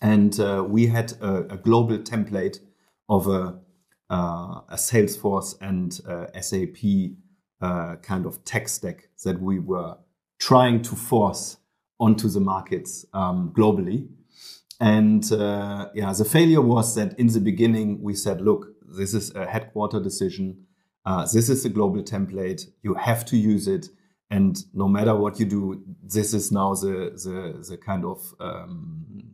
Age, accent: 30-49, German